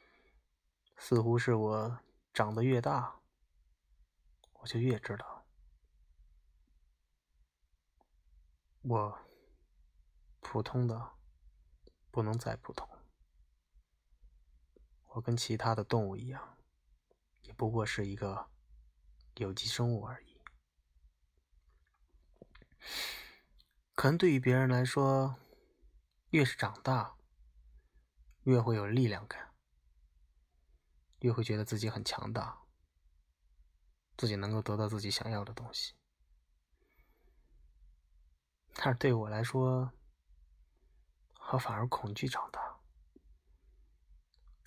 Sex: male